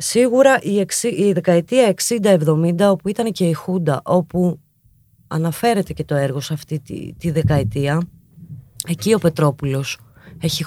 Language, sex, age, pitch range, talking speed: Greek, female, 20-39, 140-175 Hz, 140 wpm